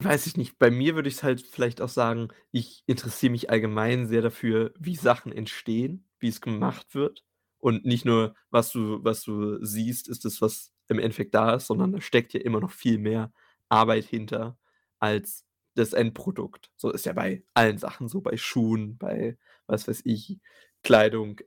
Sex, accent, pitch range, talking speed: male, German, 110-125 Hz, 185 wpm